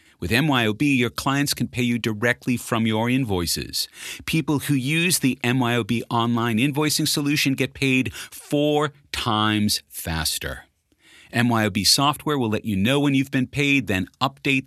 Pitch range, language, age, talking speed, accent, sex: 105-140 Hz, English, 40-59, 145 wpm, American, male